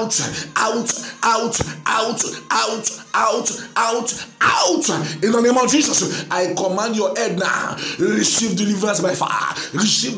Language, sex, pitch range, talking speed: English, male, 175-240 Hz, 135 wpm